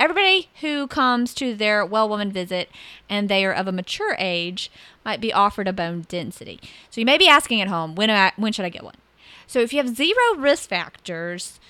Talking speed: 210 wpm